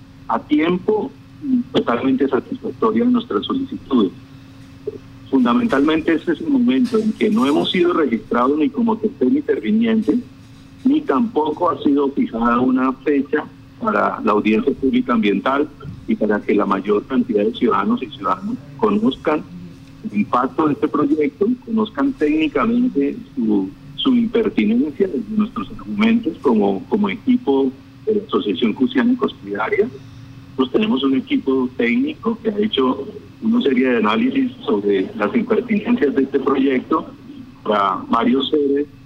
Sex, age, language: male, 50-69, Spanish